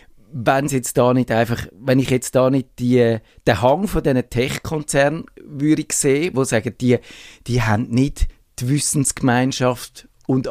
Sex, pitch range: male, 115-140 Hz